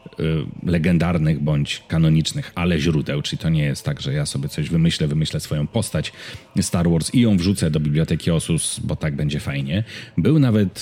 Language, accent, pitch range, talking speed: Polish, native, 80-105 Hz, 175 wpm